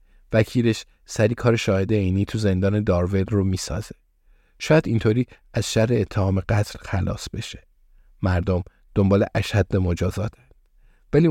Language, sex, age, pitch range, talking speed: Persian, male, 50-69, 95-115 Hz, 120 wpm